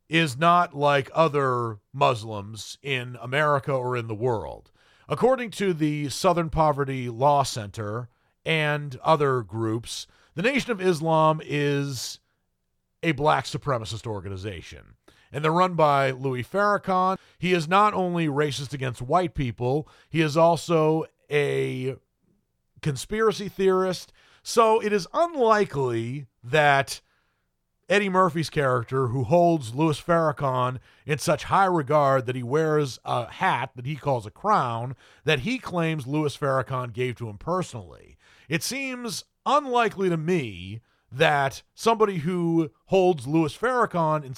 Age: 40-59